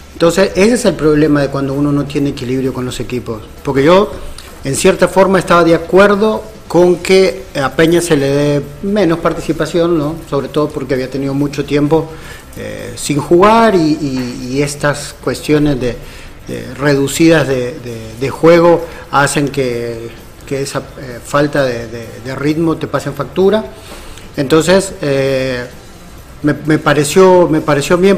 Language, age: Spanish, 40-59